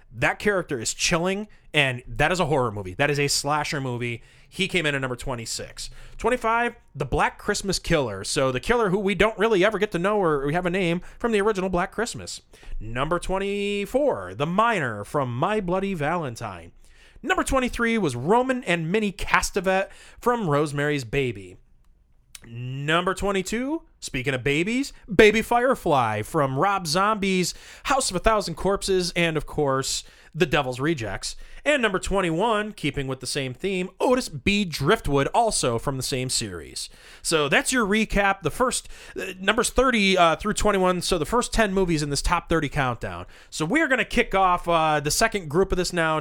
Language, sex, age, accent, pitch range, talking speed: English, male, 30-49, American, 145-210 Hz, 180 wpm